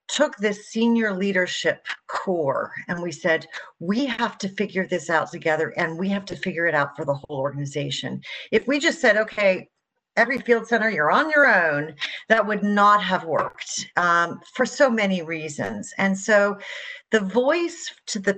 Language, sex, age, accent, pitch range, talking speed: English, female, 50-69, American, 175-220 Hz, 175 wpm